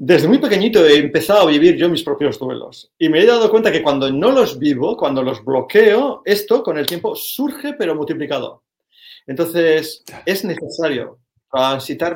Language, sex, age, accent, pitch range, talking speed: Spanish, male, 40-59, Spanish, 130-215 Hz, 175 wpm